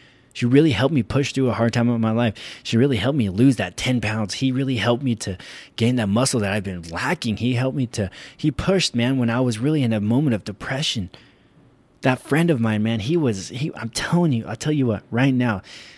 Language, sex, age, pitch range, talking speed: English, male, 20-39, 100-135 Hz, 245 wpm